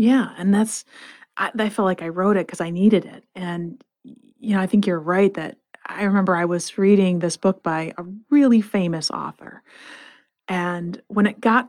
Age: 30-49